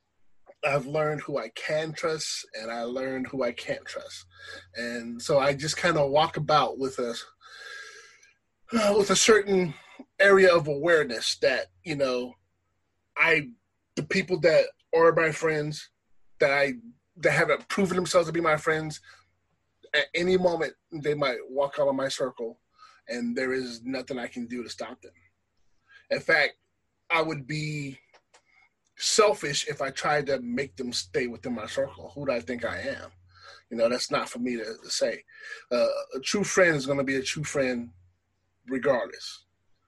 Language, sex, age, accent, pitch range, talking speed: English, male, 20-39, American, 130-180 Hz, 165 wpm